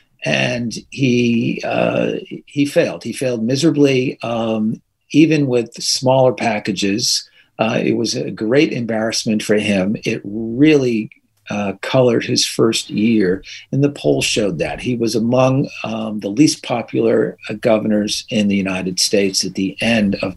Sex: male